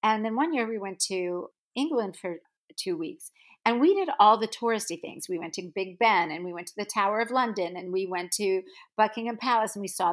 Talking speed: 235 wpm